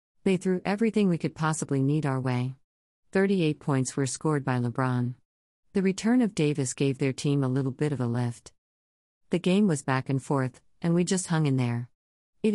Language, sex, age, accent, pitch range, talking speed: English, female, 50-69, American, 125-170 Hz, 195 wpm